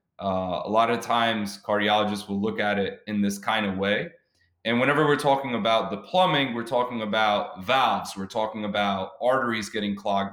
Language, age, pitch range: English, 20-39, 100-125 Hz